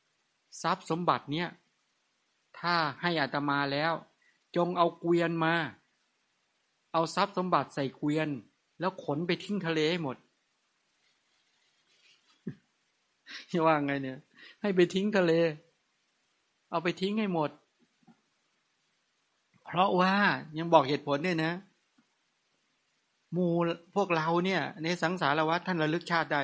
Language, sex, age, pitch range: English, male, 60-79, 145-175 Hz